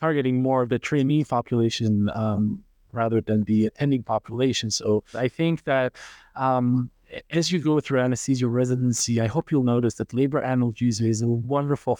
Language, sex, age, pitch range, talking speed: English, male, 30-49, 115-140 Hz, 165 wpm